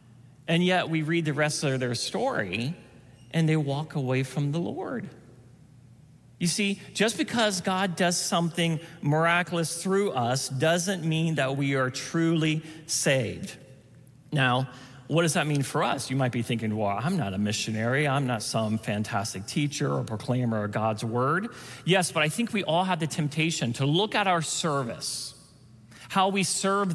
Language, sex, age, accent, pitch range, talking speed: English, male, 40-59, American, 130-170 Hz, 170 wpm